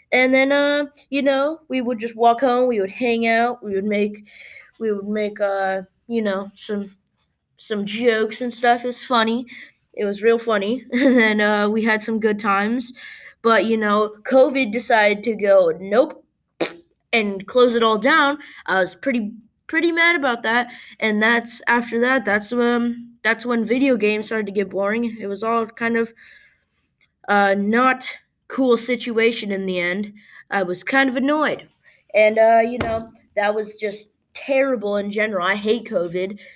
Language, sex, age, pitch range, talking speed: English, female, 20-39, 200-245 Hz, 175 wpm